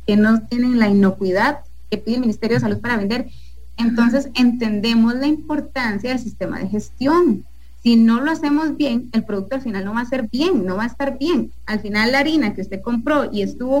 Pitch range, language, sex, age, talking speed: 210-280 Hz, English, female, 30-49, 210 wpm